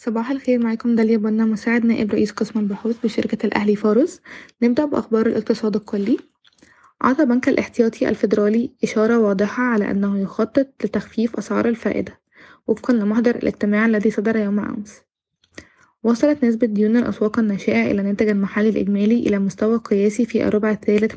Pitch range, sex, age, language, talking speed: 210-230 Hz, female, 20-39, Arabic, 145 wpm